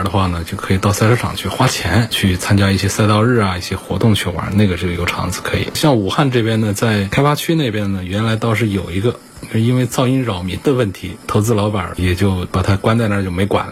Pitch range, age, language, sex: 95-115 Hz, 20-39, Chinese, male